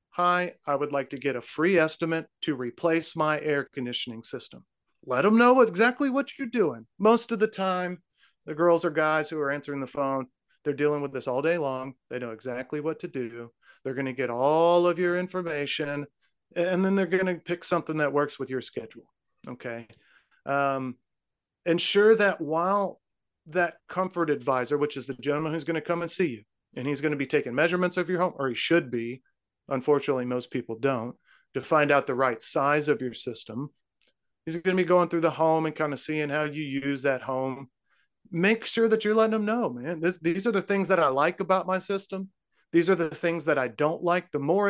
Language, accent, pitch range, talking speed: English, American, 135-180 Hz, 210 wpm